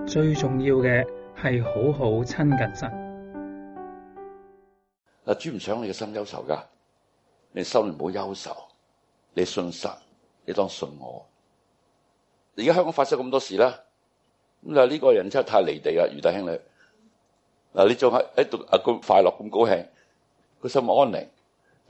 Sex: male